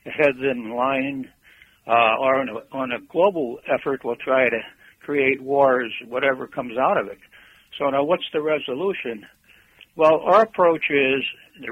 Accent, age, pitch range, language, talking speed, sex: American, 60-79, 130-155 Hz, English, 155 wpm, male